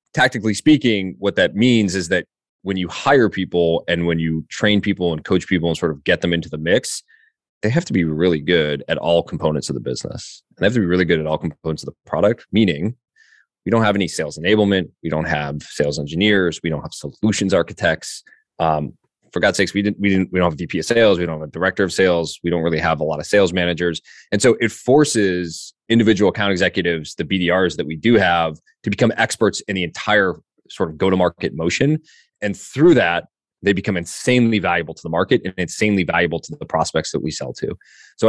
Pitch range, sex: 85-105 Hz, male